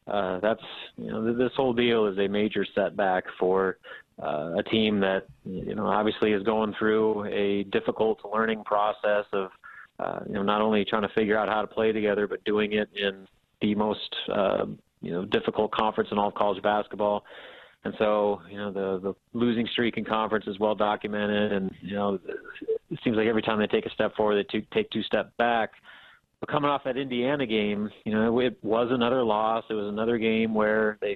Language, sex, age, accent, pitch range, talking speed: English, male, 30-49, American, 105-120 Hz, 200 wpm